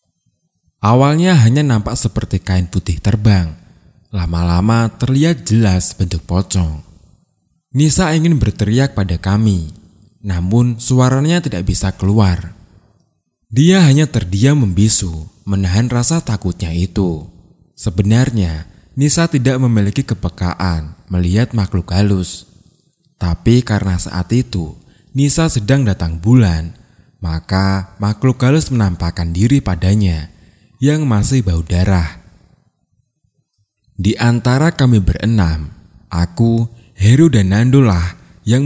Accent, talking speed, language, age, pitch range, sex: native, 100 wpm, Indonesian, 20-39, 90-120 Hz, male